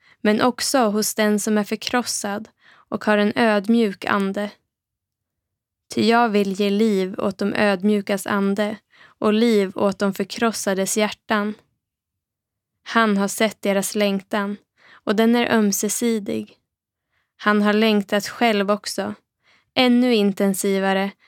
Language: Swedish